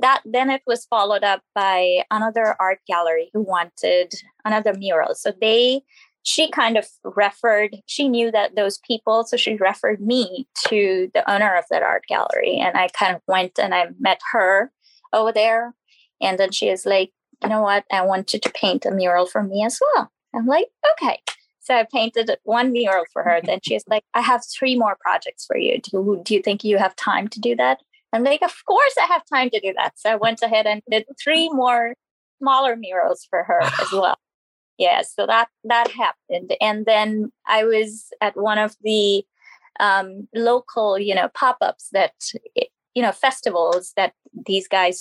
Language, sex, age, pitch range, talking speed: English, female, 20-39, 195-245 Hz, 195 wpm